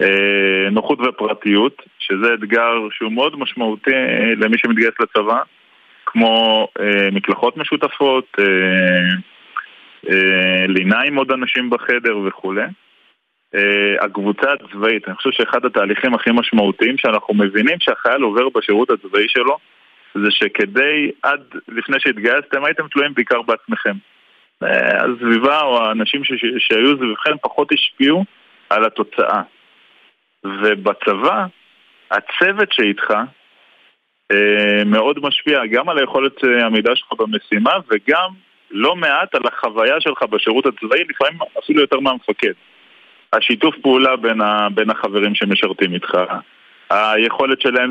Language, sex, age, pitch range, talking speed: Hebrew, male, 20-39, 105-130 Hz, 115 wpm